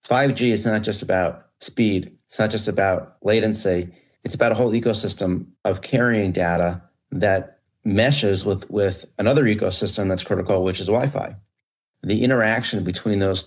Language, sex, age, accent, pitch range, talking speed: English, male, 40-59, American, 90-105 Hz, 150 wpm